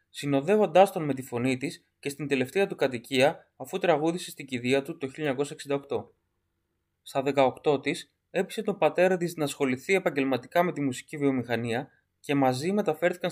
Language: Greek